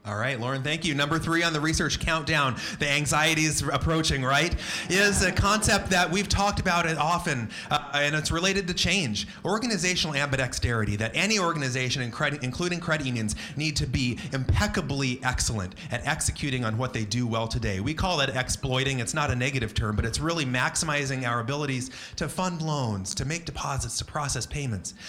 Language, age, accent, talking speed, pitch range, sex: English, 30-49, American, 180 wpm, 110-150 Hz, male